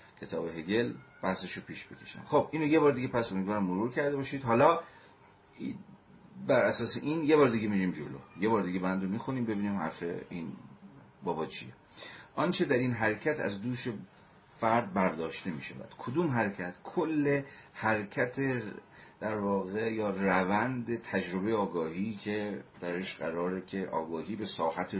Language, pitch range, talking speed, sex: Persian, 90-115 Hz, 150 wpm, male